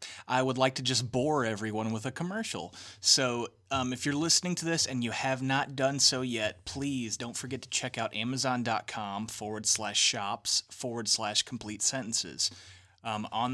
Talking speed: 175 wpm